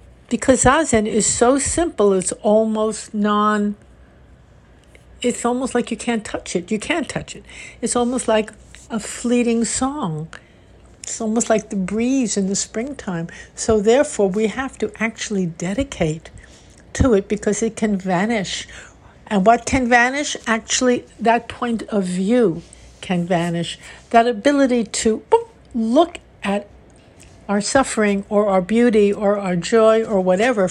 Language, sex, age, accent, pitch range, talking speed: English, female, 60-79, American, 200-240 Hz, 140 wpm